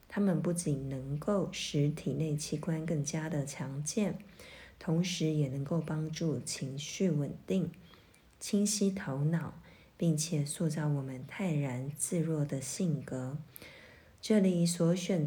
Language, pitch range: Chinese, 145-180 Hz